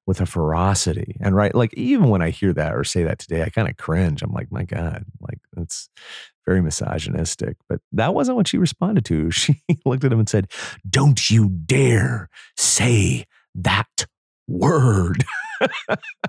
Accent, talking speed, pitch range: American, 170 wpm, 80-120 Hz